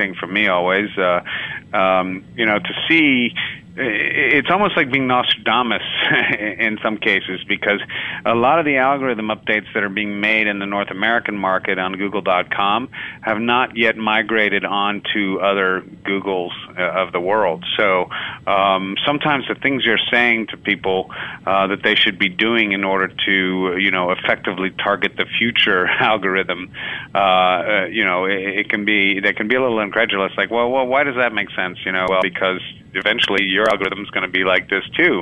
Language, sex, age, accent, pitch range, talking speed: English, male, 40-59, American, 95-110 Hz, 180 wpm